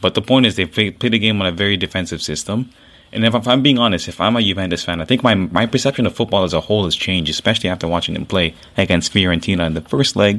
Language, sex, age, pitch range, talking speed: English, male, 20-39, 85-110 Hz, 290 wpm